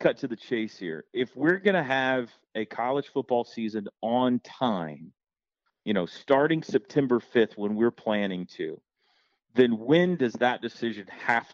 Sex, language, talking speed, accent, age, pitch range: male, English, 160 wpm, American, 40-59, 110-140 Hz